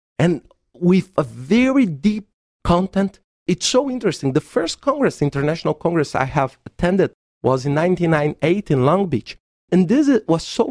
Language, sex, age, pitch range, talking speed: English, male, 50-69, 140-210 Hz, 150 wpm